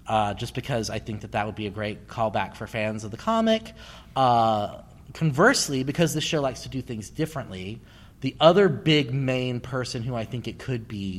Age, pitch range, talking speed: 30-49, 105-130 Hz, 205 wpm